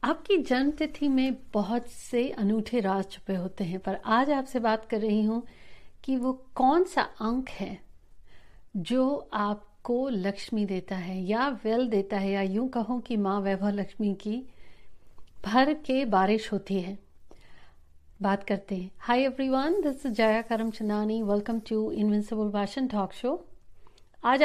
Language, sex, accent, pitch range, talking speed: Hindi, female, native, 195-255 Hz, 150 wpm